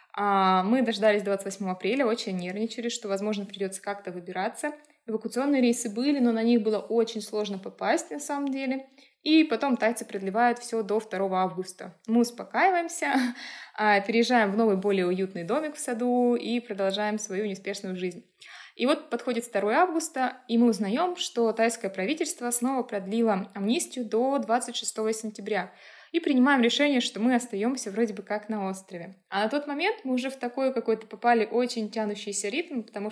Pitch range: 210-255 Hz